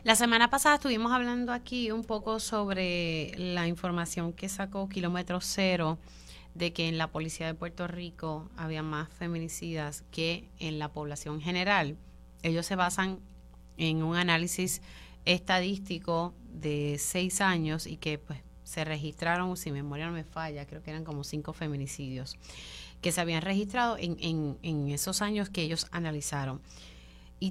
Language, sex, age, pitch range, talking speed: Spanish, female, 30-49, 150-190 Hz, 155 wpm